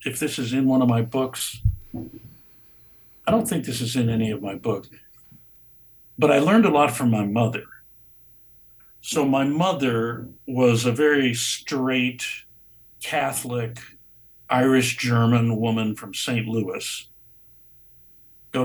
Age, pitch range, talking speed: 60-79, 115-135 Hz, 130 wpm